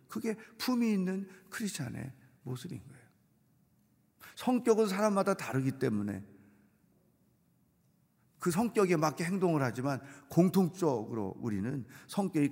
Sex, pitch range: male, 130-190 Hz